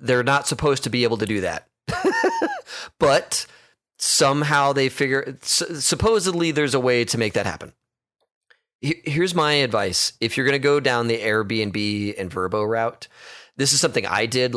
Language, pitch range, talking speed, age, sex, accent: English, 110-145 Hz, 165 wpm, 30-49, male, American